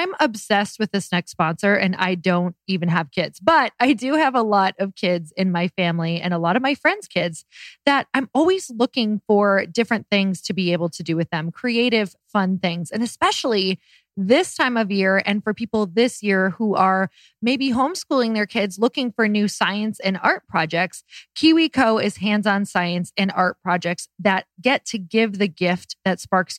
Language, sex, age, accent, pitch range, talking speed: English, female, 20-39, American, 180-240 Hz, 195 wpm